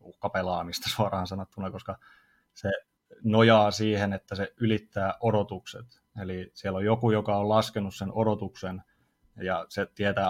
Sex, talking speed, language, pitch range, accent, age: male, 135 wpm, Finnish, 95-110 Hz, native, 30-49